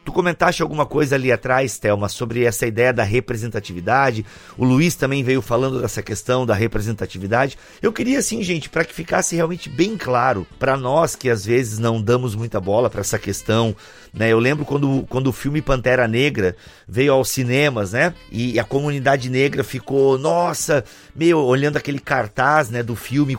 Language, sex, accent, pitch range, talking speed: Portuguese, male, Brazilian, 115-150 Hz, 180 wpm